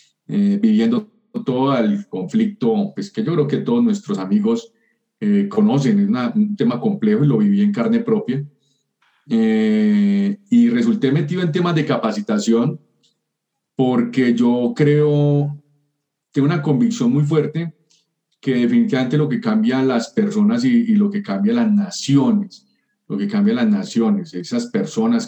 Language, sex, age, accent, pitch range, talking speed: Spanish, male, 40-59, Colombian, 150-225 Hz, 150 wpm